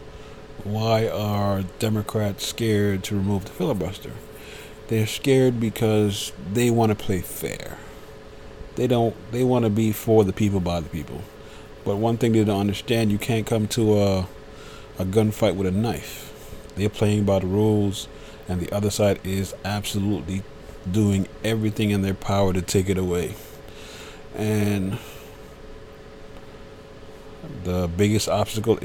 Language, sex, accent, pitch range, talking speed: English, male, American, 95-110 Hz, 135 wpm